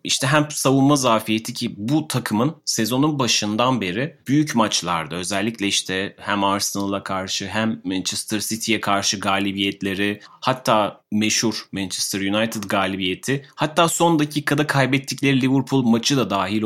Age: 30-49